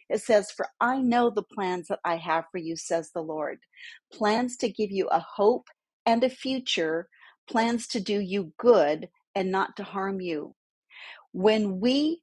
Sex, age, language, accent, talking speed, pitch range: female, 40-59, English, American, 175 wpm, 185-250 Hz